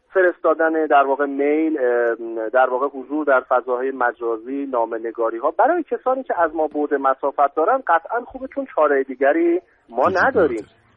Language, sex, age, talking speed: Persian, male, 40-59, 140 wpm